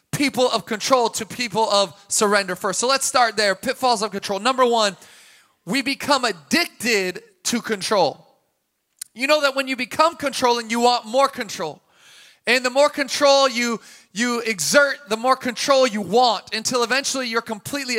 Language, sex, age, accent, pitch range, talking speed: English, male, 20-39, American, 210-260 Hz, 165 wpm